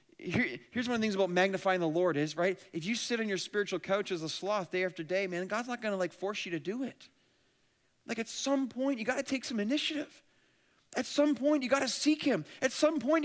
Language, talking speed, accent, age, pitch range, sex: English, 255 wpm, American, 40-59, 190-290 Hz, male